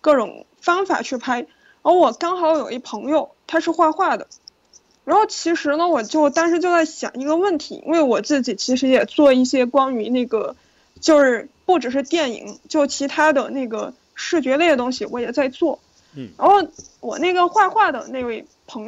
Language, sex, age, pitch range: Chinese, female, 20-39, 260-325 Hz